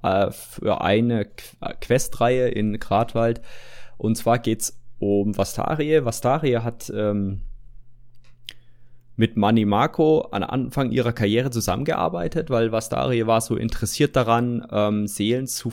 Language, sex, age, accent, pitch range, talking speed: German, male, 20-39, German, 100-120 Hz, 115 wpm